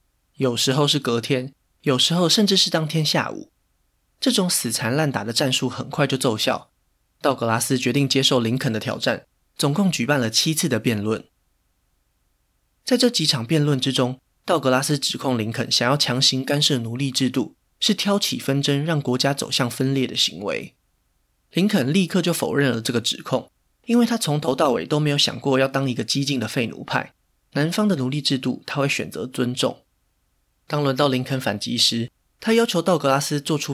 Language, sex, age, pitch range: Chinese, male, 20-39, 120-150 Hz